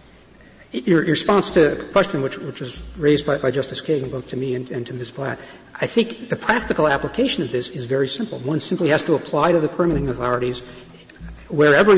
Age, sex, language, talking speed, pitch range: 60-79, male, English, 210 wpm, 130-165 Hz